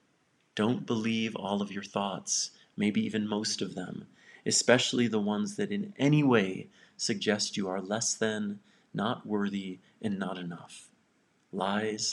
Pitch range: 100-115 Hz